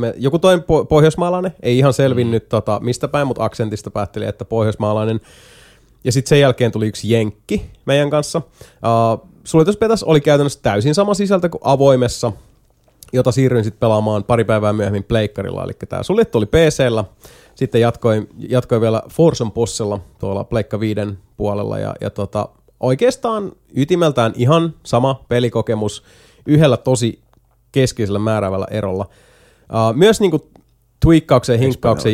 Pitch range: 110-140 Hz